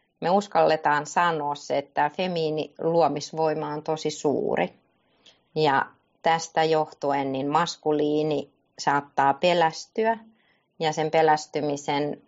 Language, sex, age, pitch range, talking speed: Finnish, female, 30-49, 145-160 Hz, 100 wpm